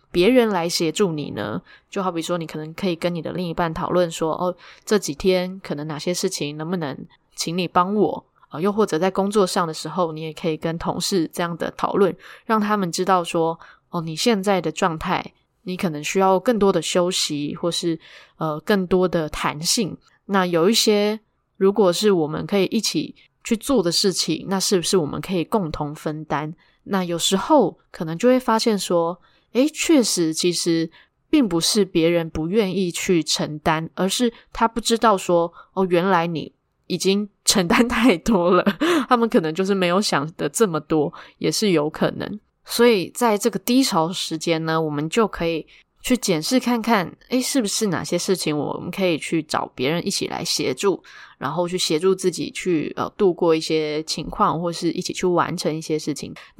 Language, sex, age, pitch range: Chinese, female, 10-29, 165-205 Hz